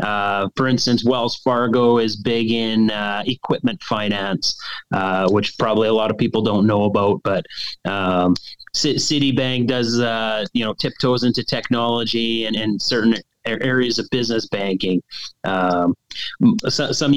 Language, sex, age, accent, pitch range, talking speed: English, male, 30-49, American, 115-140 Hz, 145 wpm